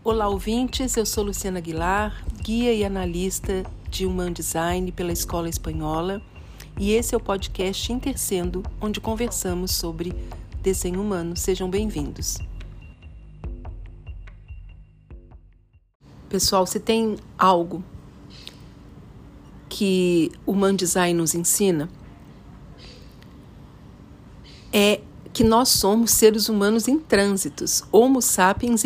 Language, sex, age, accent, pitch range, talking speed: English, female, 50-69, Brazilian, 180-225 Hz, 100 wpm